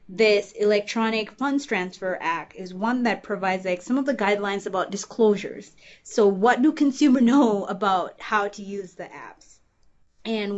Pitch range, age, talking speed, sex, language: 190-225 Hz, 20-39, 160 wpm, female, English